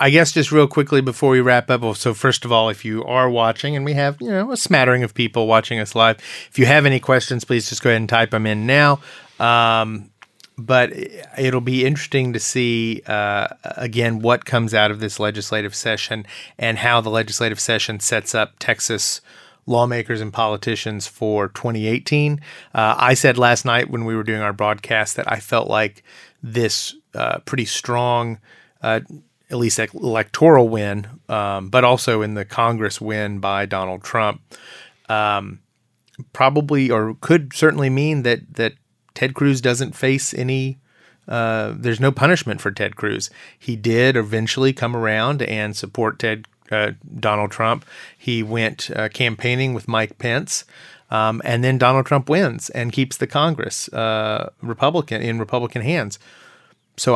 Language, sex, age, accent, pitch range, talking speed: English, male, 30-49, American, 110-130 Hz, 170 wpm